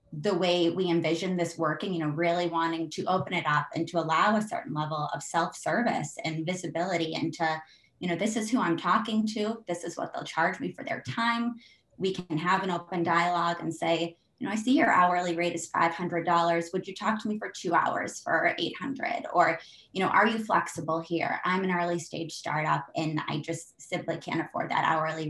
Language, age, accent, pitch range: English, 20-39, American, 165-195 Hz